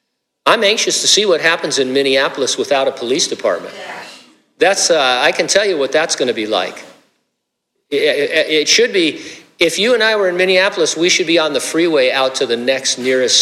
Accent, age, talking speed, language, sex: American, 50-69, 205 wpm, English, male